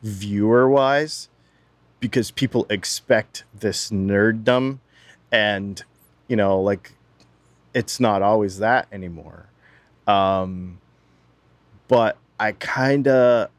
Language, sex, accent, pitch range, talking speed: English, male, American, 95-120 Hz, 85 wpm